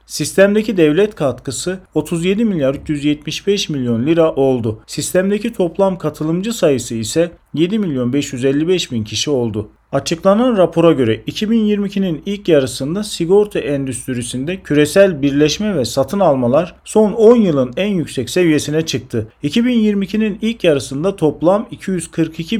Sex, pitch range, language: male, 135-195 Hz, Turkish